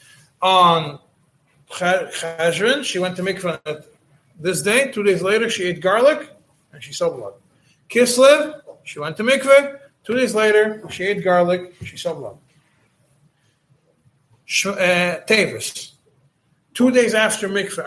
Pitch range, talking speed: 150-200 Hz, 130 wpm